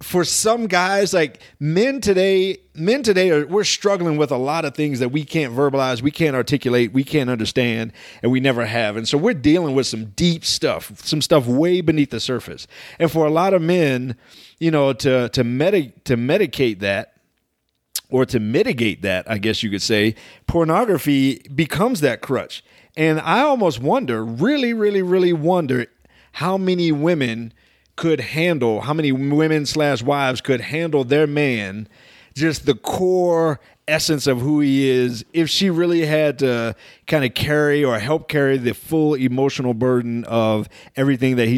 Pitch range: 120-160 Hz